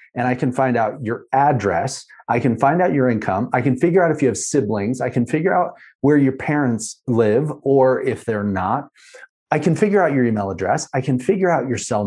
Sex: male